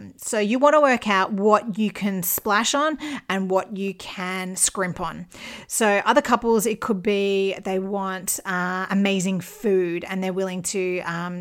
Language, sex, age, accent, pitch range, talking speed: English, female, 30-49, Australian, 185-220 Hz, 175 wpm